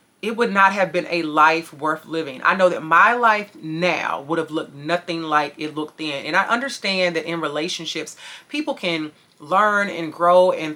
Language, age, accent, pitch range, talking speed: English, 30-49, American, 155-195 Hz, 195 wpm